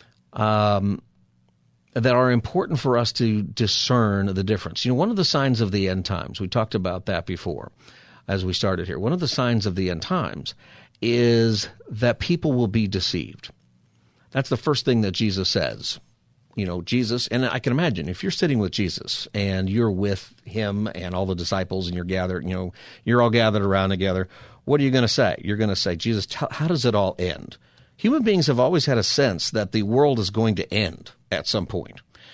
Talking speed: 210 wpm